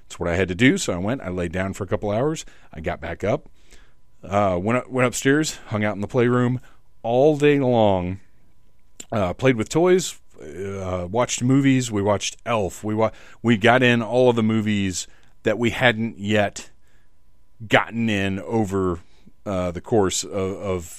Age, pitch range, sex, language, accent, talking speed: 40-59, 95-120 Hz, male, English, American, 175 wpm